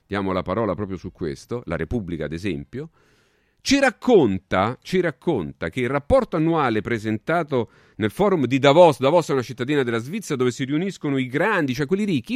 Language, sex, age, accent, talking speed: Italian, male, 40-59, native, 175 wpm